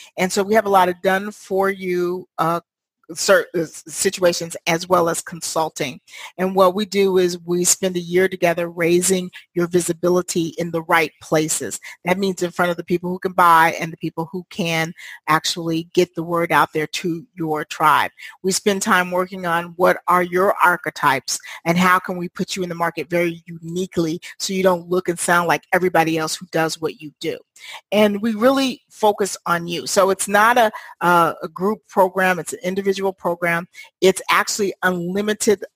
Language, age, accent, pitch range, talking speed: English, 40-59, American, 165-190 Hz, 185 wpm